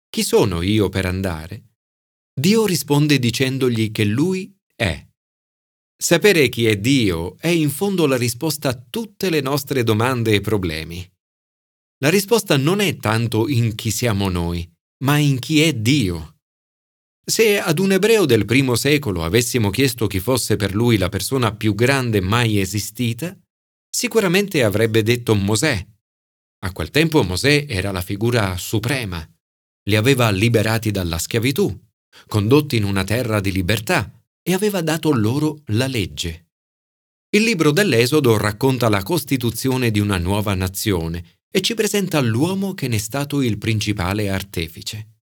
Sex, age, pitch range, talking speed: male, 40-59, 100-150 Hz, 145 wpm